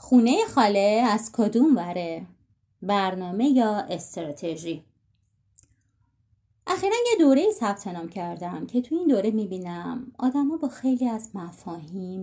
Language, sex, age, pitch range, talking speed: Persian, female, 30-49, 160-255 Hz, 120 wpm